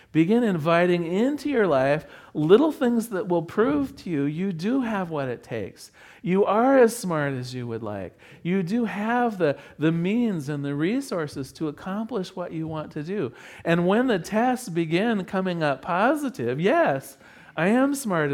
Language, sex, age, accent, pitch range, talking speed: English, male, 40-59, American, 140-200 Hz, 175 wpm